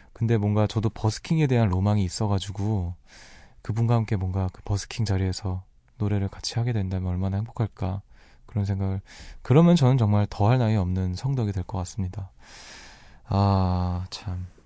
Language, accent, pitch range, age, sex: Korean, native, 100-130 Hz, 20-39, male